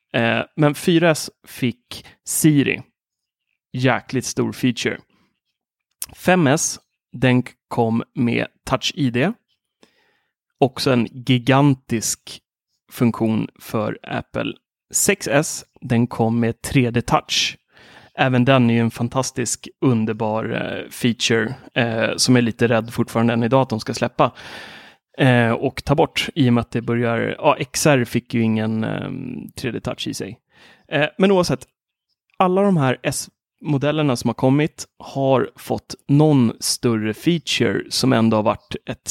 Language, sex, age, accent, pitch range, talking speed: Swedish, male, 30-49, native, 115-150 Hz, 120 wpm